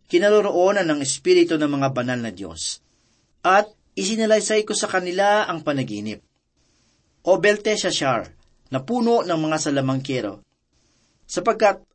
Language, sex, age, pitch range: Filipino, male, 40-59, 145-205 Hz